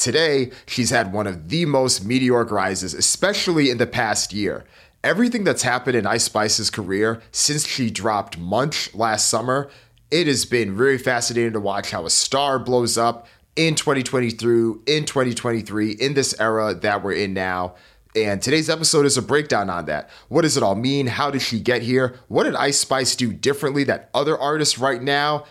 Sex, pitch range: male, 105-135 Hz